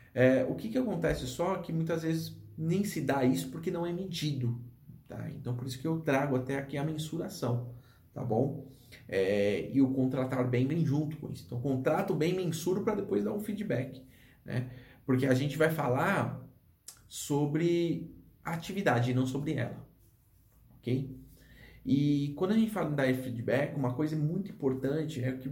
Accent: Brazilian